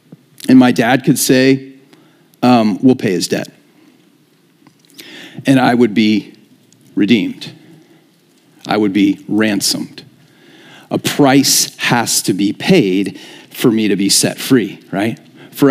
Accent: American